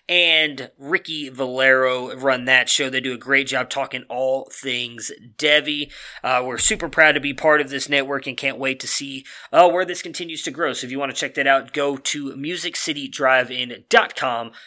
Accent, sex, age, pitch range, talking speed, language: American, male, 20-39, 130-155 Hz, 190 wpm, English